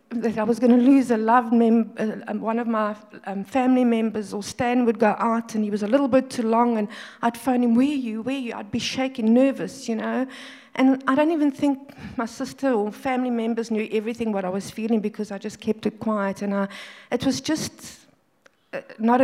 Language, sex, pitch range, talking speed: English, female, 210-250 Hz, 230 wpm